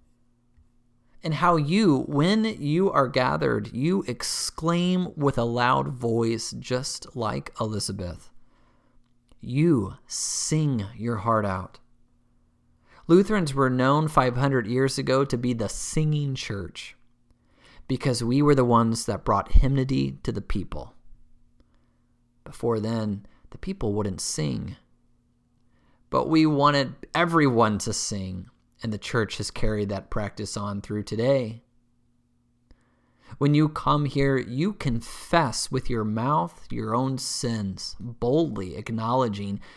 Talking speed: 120 wpm